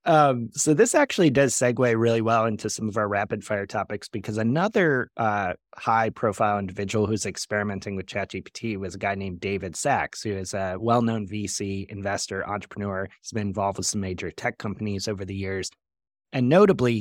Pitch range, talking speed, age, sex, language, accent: 95-115 Hz, 175 wpm, 30-49, male, English, American